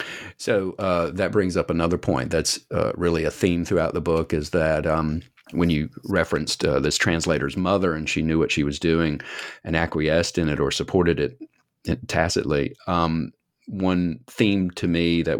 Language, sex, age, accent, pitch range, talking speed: English, male, 40-59, American, 80-95 Hz, 180 wpm